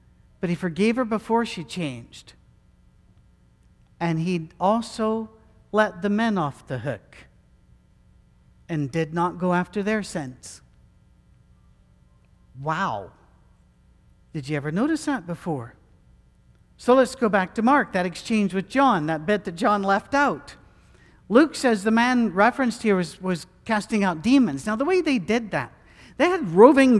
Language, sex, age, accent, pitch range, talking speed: English, male, 60-79, American, 175-245 Hz, 145 wpm